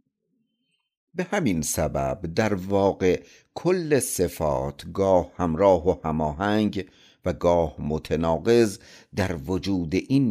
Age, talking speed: 50-69, 100 wpm